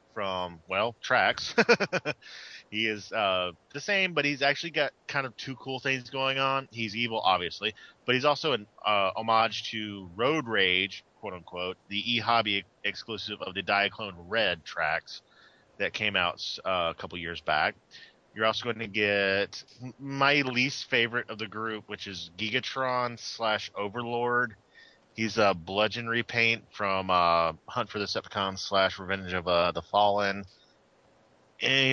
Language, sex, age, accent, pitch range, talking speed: English, male, 30-49, American, 95-120 Hz, 160 wpm